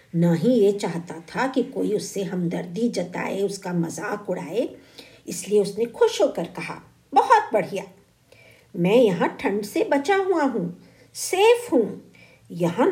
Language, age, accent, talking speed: Hindi, 50-69, native, 135 wpm